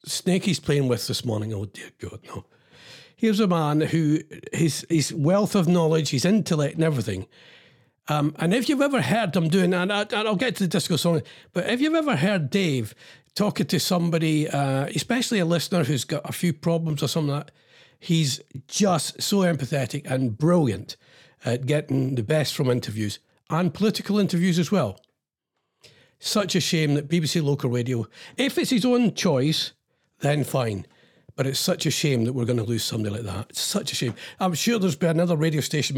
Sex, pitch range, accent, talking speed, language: male, 140-195 Hz, British, 195 wpm, English